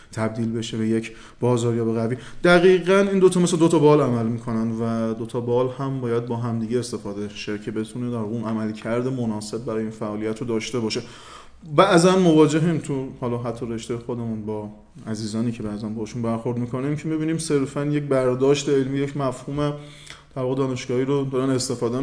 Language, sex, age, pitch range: Persian, male, 20-39, 115-145 Hz